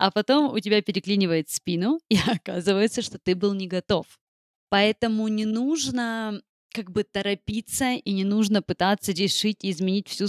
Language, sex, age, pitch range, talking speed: Russian, female, 20-39, 180-220 Hz, 155 wpm